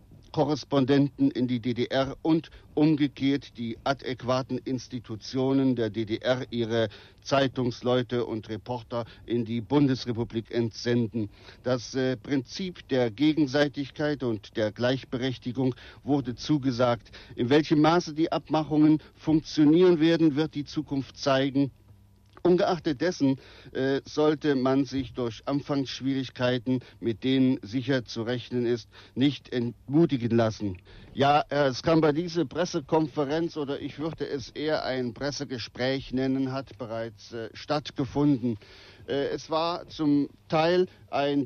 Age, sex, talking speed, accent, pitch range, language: 60-79, male, 120 wpm, German, 120-145 Hz, German